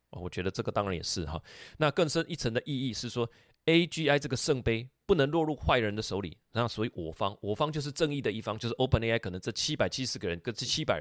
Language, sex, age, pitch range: Chinese, male, 30-49, 100-135 Hz